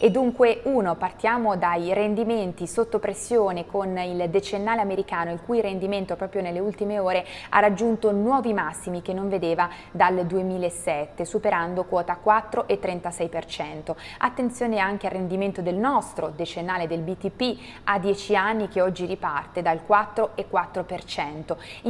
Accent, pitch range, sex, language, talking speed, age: native, 175-220 Hz, female, Italian, 130 wpm, 20-39